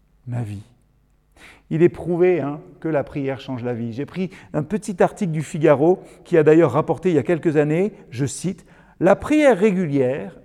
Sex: male